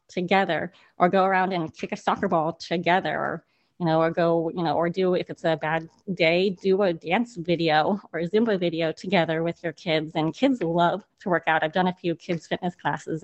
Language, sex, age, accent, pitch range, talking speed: English, female, 30-49, American, 165-200 Hz, 220 wpm